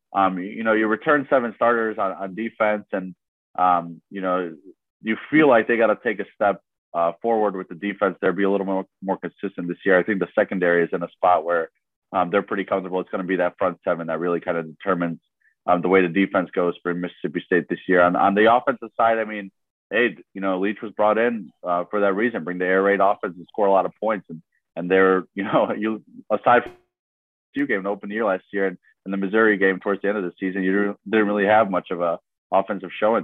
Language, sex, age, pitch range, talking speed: English, male, 30-49, 90-110 Hz, 245 wpm